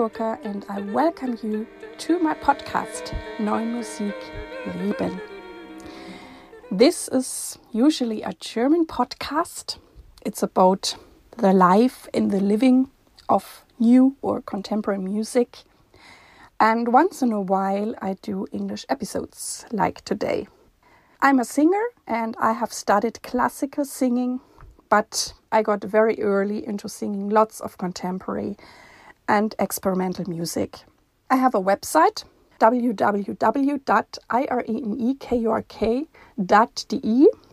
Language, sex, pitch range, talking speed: German, female, 205-260 Hz, 105 wpm